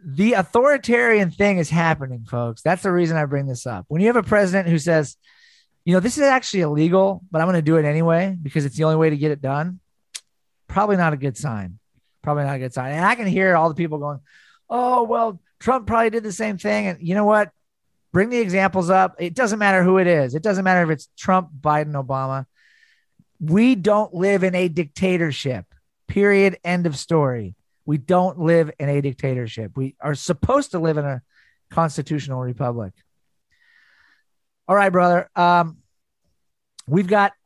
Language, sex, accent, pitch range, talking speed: English, male, American, 145-195 Hz, 195 wpm